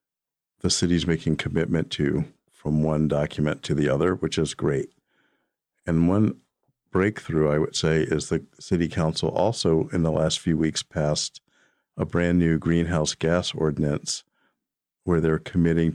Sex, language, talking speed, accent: male, English, 150 wpm, American